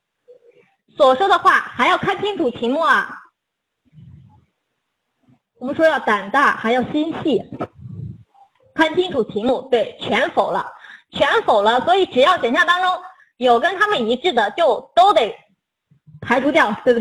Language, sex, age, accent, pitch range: Chinese, female, 20-39, native, 230-320 Hz